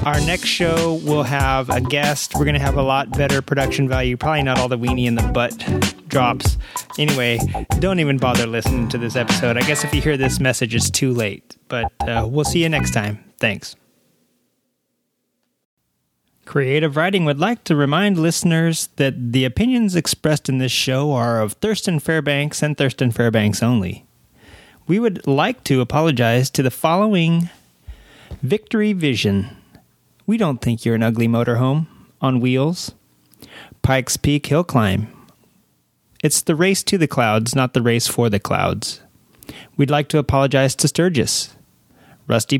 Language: English